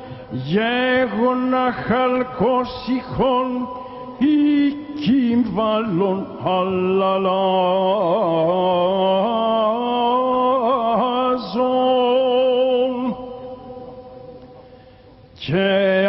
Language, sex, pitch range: Greek, male, 225-255 Hz